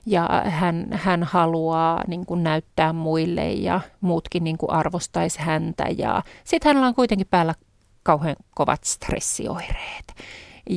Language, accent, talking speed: Finnish, native, 110 wpm